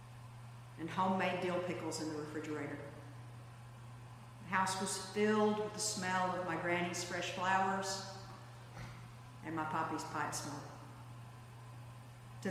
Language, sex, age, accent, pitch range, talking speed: English, female, 50-69, American, 120-190 Hz, 120 wpm